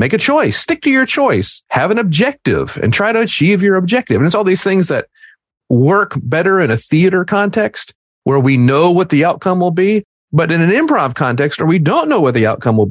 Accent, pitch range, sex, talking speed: American, 130-190 Hz, male, 230 wpm